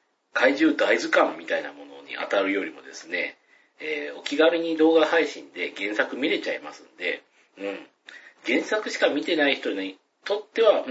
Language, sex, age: Japanese, male, 40-59